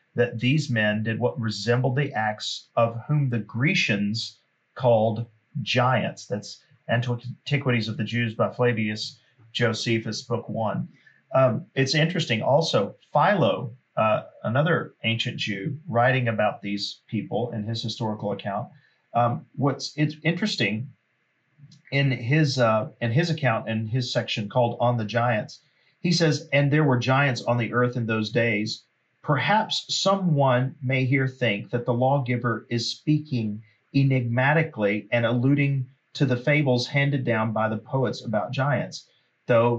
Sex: male